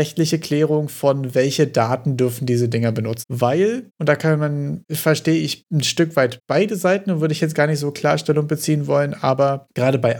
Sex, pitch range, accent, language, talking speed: male, 140-170 Hz, German, German, 200 wpm